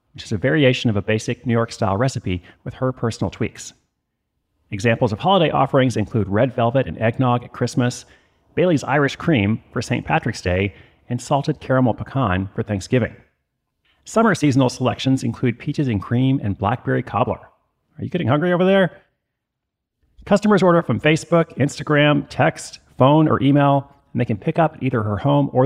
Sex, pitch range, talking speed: male, 110-145 Hz, 170 wpm